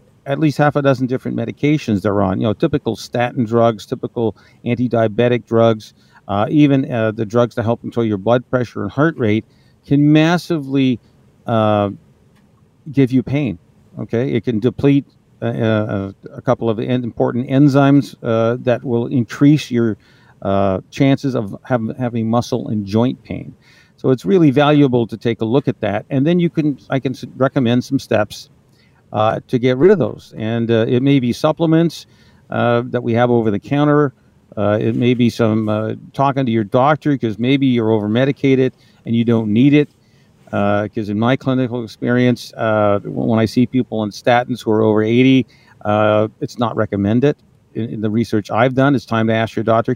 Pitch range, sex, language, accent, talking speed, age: 110-135 Hz, male, English, American, 180 wpm, 50-69